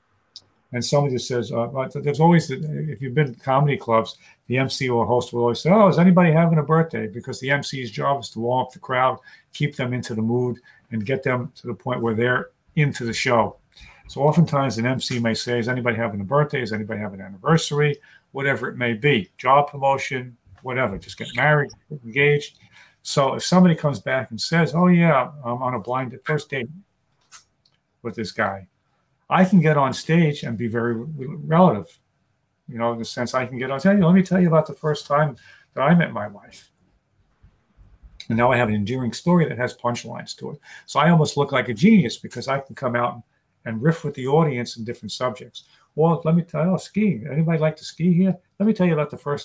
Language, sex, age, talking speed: English, male, 50-69, 220 wpm